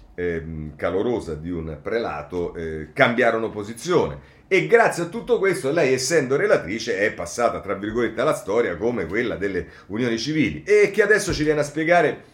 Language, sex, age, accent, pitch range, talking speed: Italian, male, 40-59, native, 95-145 Hz, 165 wpm